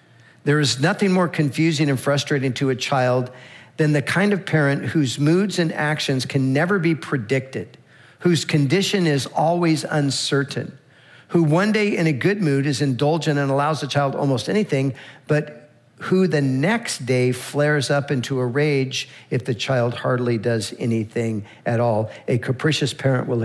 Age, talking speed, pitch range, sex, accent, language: 50-69, 165 wpm, 130-160 Hz, male, American, English